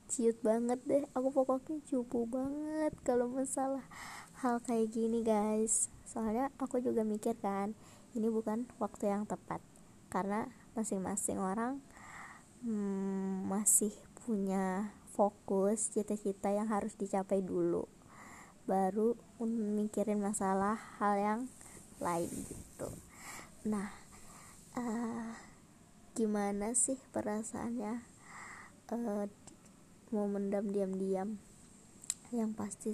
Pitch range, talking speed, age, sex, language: 205-235 Hz, 95 wpm, 20-39, male, Indonesian